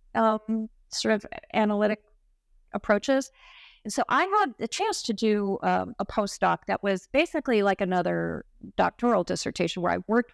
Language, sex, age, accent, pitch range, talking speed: English, female, 40-59, American, 185-245 Hz, 150 wpm